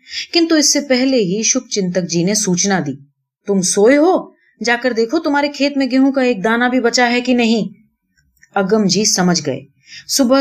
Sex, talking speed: female, 175 wpm